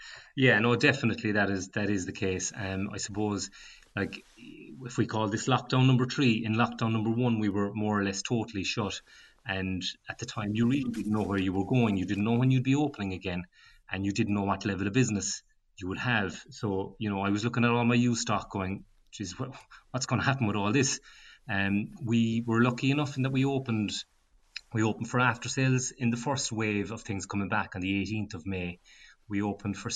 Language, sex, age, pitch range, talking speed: English, male, 30-49, 95-120 Hz, 225 wpm